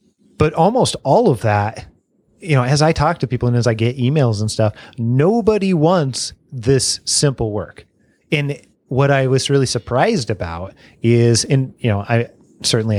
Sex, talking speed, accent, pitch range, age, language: male, 170 wpm, American, 100-125 Hz, 30-49, English